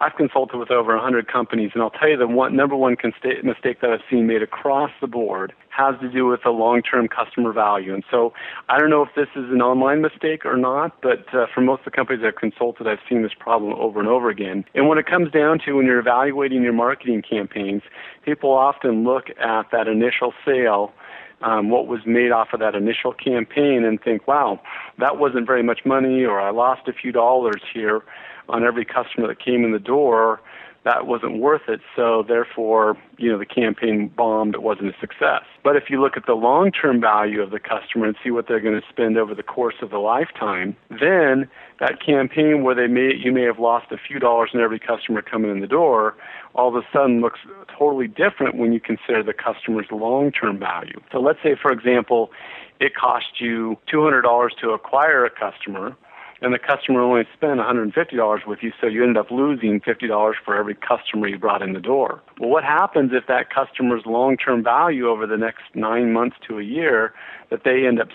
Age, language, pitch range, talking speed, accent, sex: 40-59, English, 110-130 Hz, 215 wpm, American, male